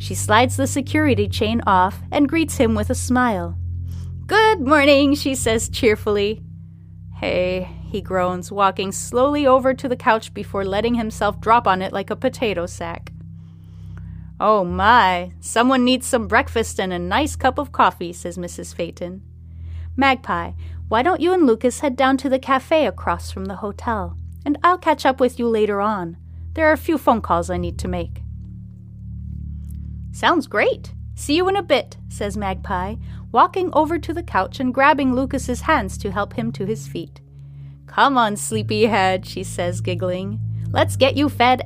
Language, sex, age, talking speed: English, female, 30-49, 170 wpm